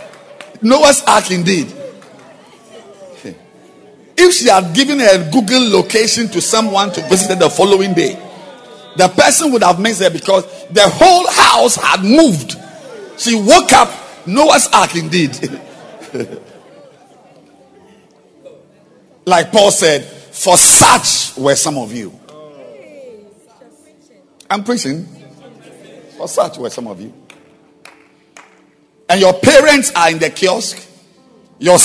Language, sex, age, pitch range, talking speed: English, male, 50-69, 170-240 Hz, 115 wpm